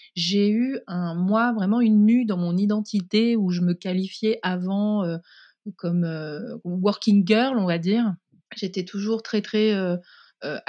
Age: 30-49